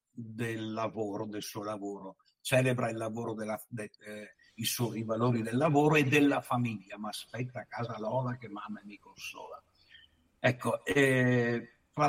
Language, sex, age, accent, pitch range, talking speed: Italian, male, 60-79, native, 110-140 Hz, 155 wpm